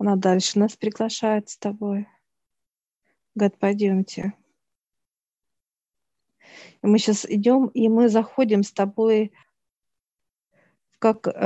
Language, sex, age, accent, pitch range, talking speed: Russian, female, 40-59, native, 190-215 Hz, 95 wpm